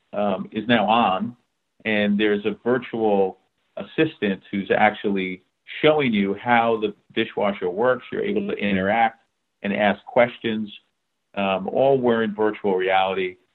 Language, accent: English, American